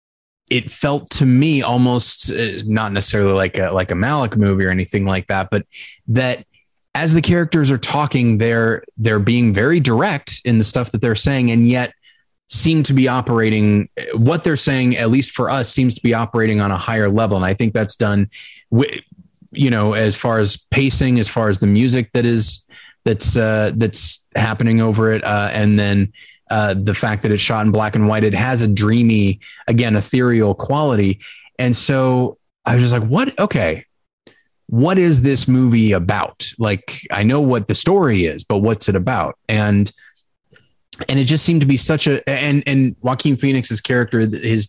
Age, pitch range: 20-39, 105-125 Hz